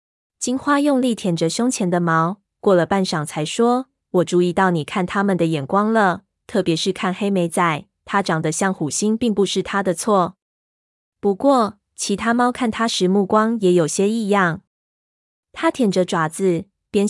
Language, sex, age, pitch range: Chinese, female, 20-39, 175-215 Hz